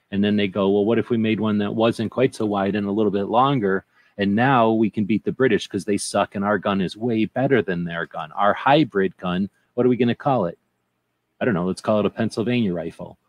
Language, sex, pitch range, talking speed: English, male, 95-115 Hz, 260 wpm